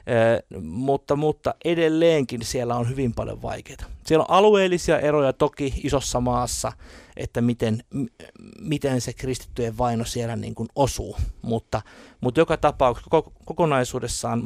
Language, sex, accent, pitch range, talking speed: Finnish, male, native, 110-140 Hz, 135 wpm